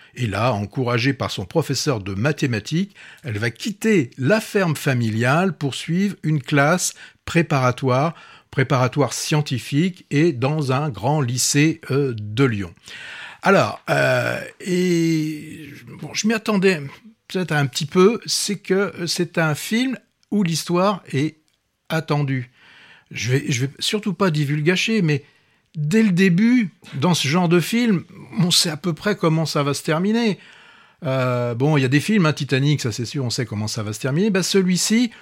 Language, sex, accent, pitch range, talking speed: French, male, French, 140-180 Hz, 165 wpm